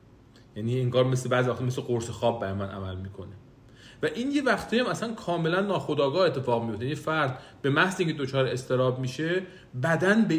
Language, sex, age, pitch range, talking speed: Persian, male, 40-59, 120-160 Hz, 185 wpm